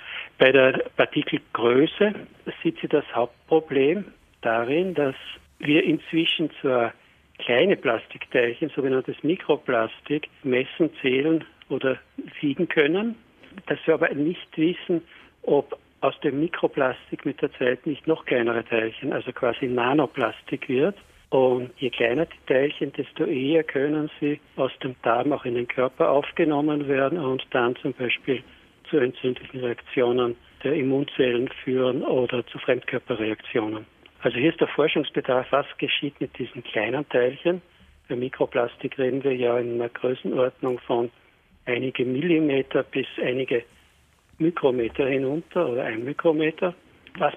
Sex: male